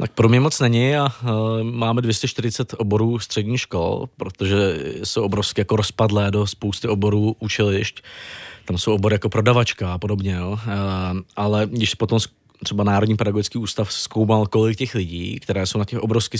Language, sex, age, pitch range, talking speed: Czech, male, 20-39, 105-115 Hz, 160 wpm